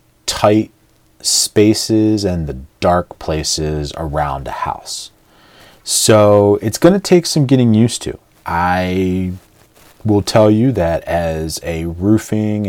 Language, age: English, 30-49